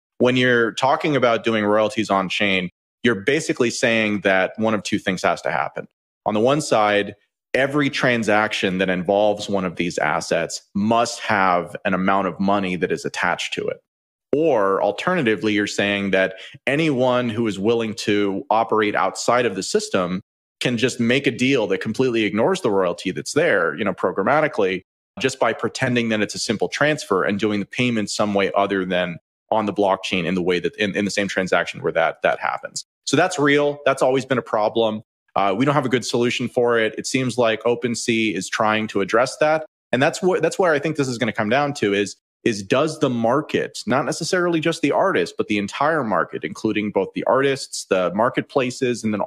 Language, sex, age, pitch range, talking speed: English, male, 30-49, 100-130 Hz, 200 wpm